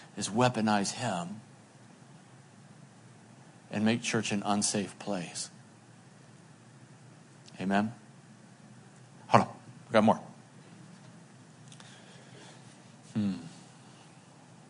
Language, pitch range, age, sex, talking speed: English, 105-125 Hz, 40-59, male, 65 wpm